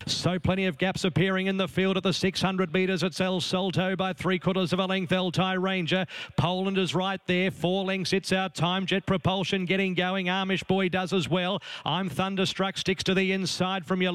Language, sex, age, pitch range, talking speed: English, male, 40-59, 185-220 Hz, 210 wpm